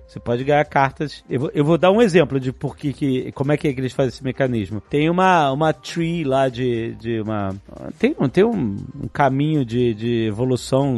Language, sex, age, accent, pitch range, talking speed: Portuguese, male, 30-49, Brazilian, 130-180 Hz, 215 wpm